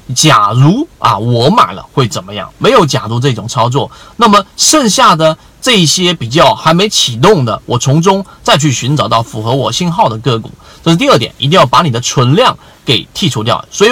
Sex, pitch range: male, 125-180 Hz